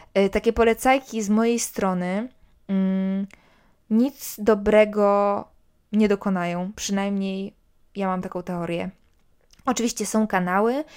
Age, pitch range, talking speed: 20-39, 190-230 Hz, 95 wpm